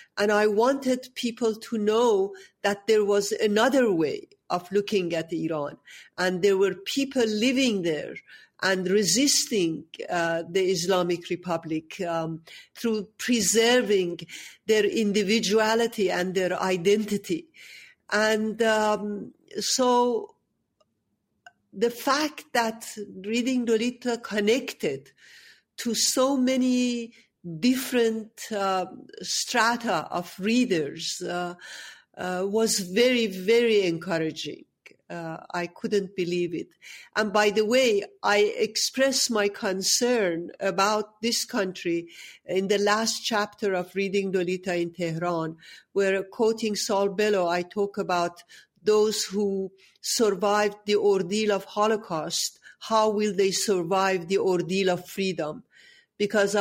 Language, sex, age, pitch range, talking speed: English, female, 50-69, 185-225 Hz, 110 wpm